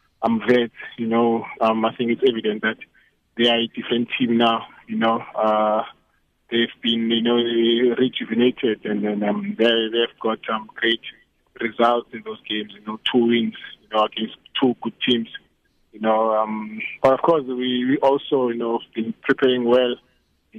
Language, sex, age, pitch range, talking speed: English, male, 20-39, 110-120 Hz, 185 wpm